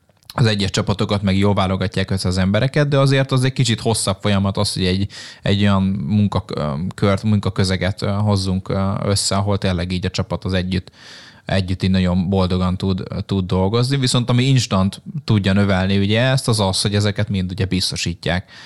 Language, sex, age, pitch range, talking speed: Hungarian, male, 20-39, 95-110 Hz, 165 wpm